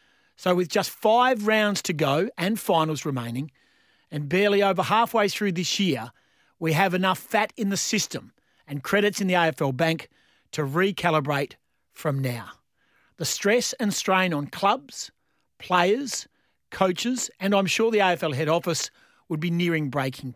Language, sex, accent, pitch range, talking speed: English, male, Australian, 160-215 Hz, 155 wpm